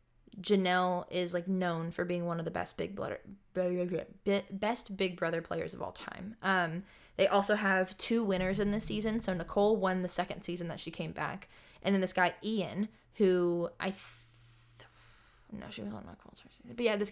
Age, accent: 20-39, American